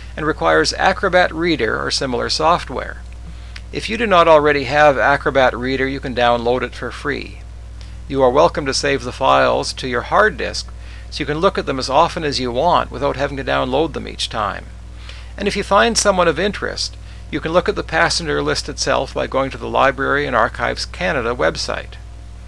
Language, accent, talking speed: English, American, 200 wpm